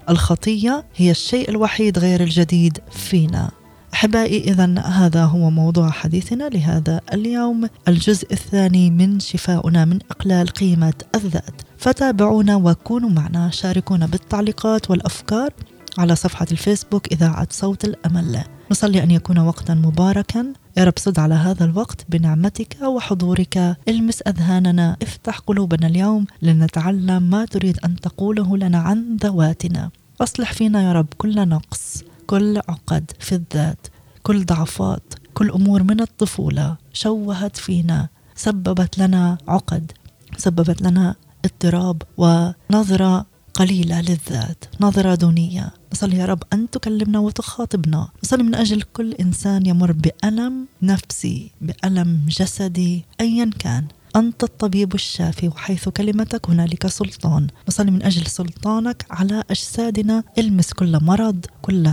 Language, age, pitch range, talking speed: Arabic, 20-39, 170-210 Hz, 120 wpm